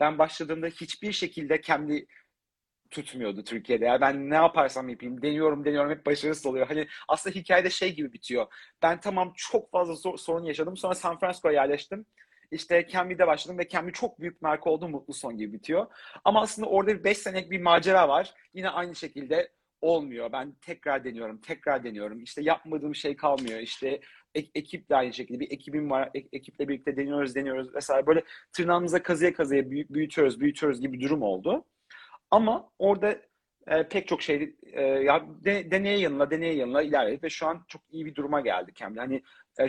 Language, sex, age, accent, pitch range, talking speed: Turkish, male, 40-59, native, 135-175 Hz, 175 wpm